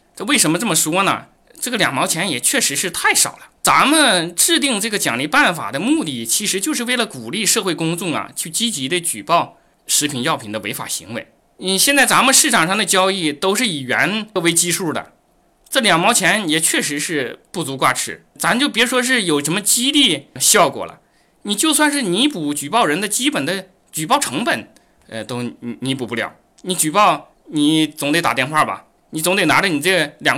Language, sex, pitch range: Chinese, male, 165-235 Hz